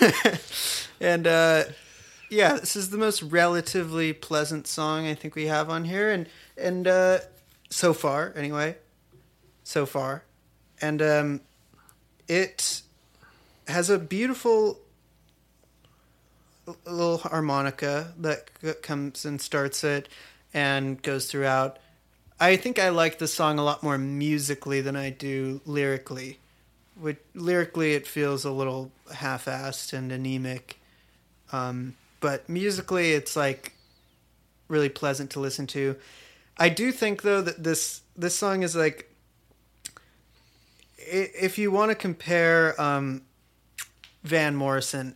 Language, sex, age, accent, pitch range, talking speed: English, male, 30-49, American, 135-170 Hz, 120 wpm